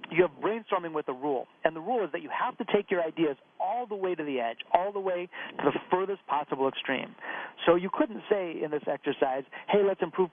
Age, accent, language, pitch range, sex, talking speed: 40-59, American, English, 145-190 Hz, male, 240 wpm